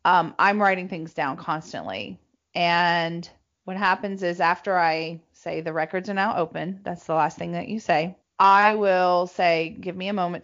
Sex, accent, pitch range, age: female, American, 165-185 Hz, 30-49